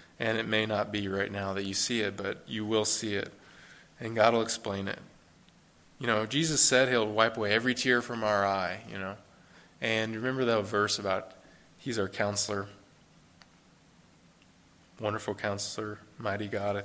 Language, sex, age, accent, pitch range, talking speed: English, male, 20-39, American, 100-115 Hz, 170 wpm